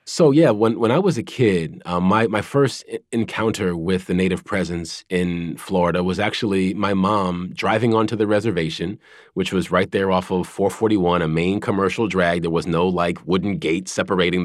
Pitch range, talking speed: 95-120 Hz, 185 wpm